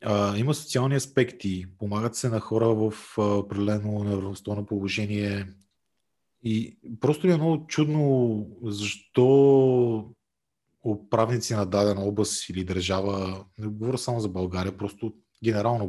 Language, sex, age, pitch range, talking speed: Bulgarian, male, 30-49, 100-120 Hz, 115 wpm